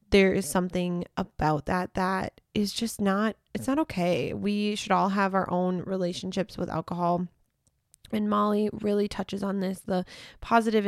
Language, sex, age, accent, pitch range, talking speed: English, female, 20-39, American, 180-200 Hz, 160 wpm